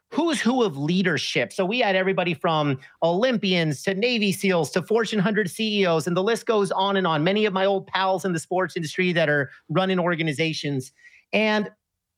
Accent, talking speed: American, 185 wpm